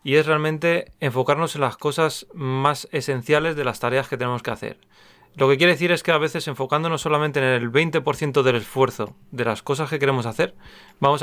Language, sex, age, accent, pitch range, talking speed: Spanish, male, 30-49, Spanish, 125-155 Hz, 205 wpm